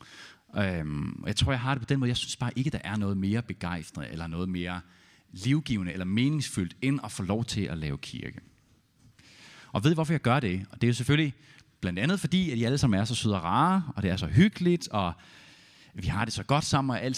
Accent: native